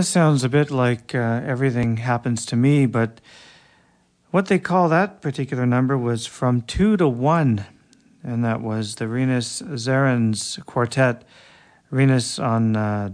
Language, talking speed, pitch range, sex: English, 145 wpm, 115-140 Hz, male